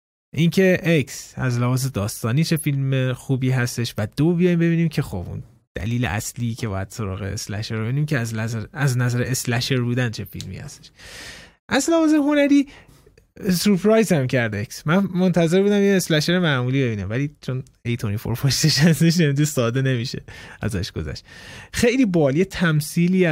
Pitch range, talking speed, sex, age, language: 115-145 Hz, 150 wpm, male, 20-39, Persian